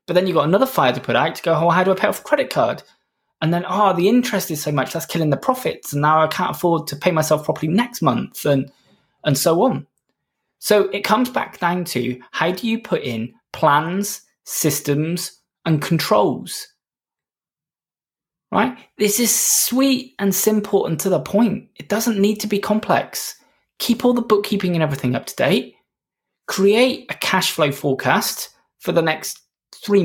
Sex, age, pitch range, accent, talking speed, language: male, 20-39, 155-210 Hz, British, 190 wpm, English